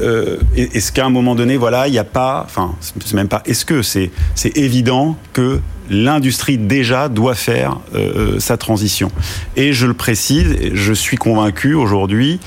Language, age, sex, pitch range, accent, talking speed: French, 40-59, male, 95-125 Hz, French, 175 wpm